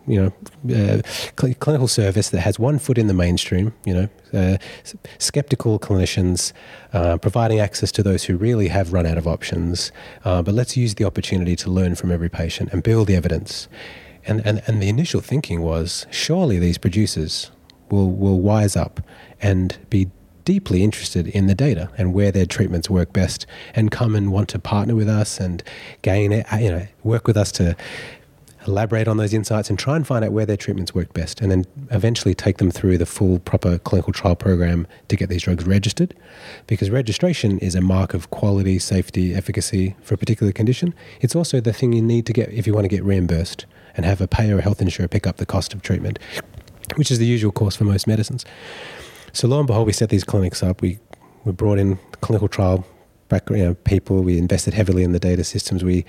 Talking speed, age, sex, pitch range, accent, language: 210 wpm, 30-49, male, 90-110 Hz, Australian, English